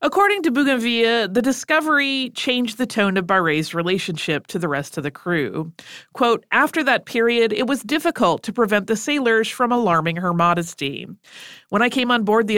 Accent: American